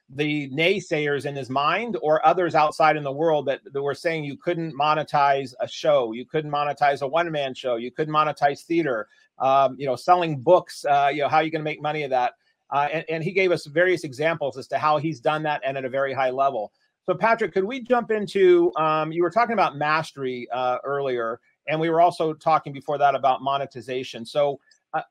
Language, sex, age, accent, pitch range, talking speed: English, male, 40-59, American, 140-175 Hz, 220 wpm